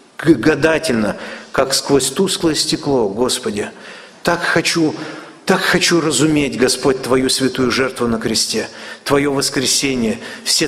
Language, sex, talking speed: Russian, male, 105 wpm